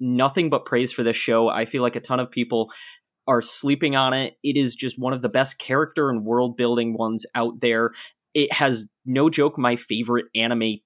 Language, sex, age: English, male, 20-39